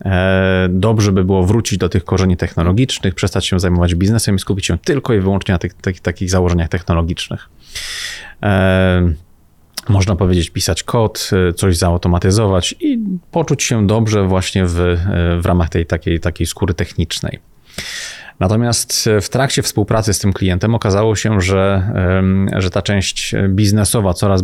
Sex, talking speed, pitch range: male, 135 wpm, 90-110 Hz